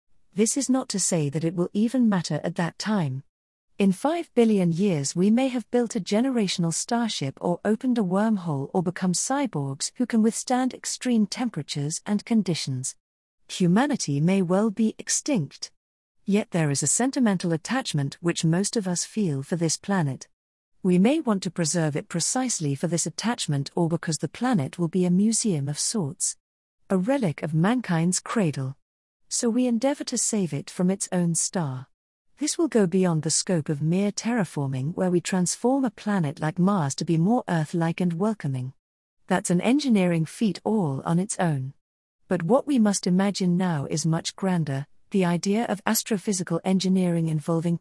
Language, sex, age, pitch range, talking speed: English, female, 40-59, 160-215 Hz, 170 wpm